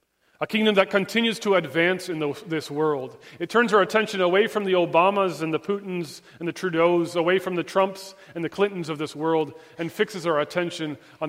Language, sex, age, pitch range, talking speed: English, male, 40-59, 150-185 Hz, 200 wpm